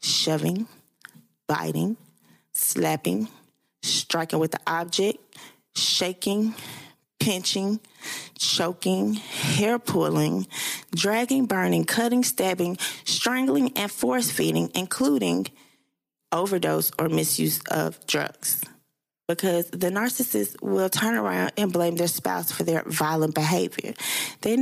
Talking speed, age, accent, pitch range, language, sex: 100 wpm, 20-39, American, 150-215 Hz, English, female